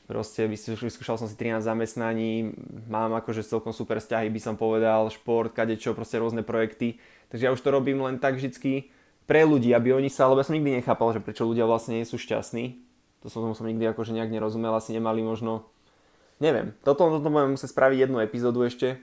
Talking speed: 195 wpm